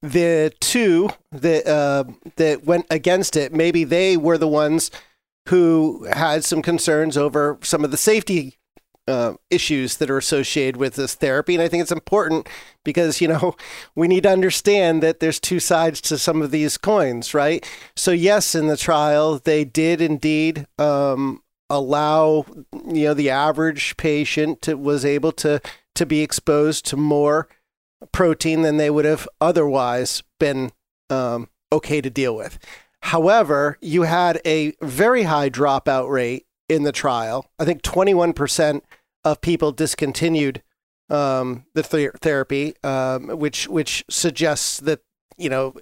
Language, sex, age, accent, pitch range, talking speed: English, male, 40-59, American, 145-170 Hz, 155 wpm